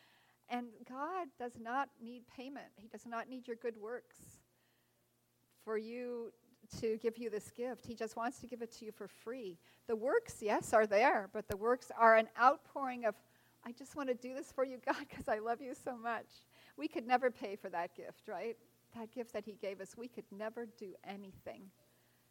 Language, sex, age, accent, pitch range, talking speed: English, female, 40-59, American, 200-250 Hz, 205 wpm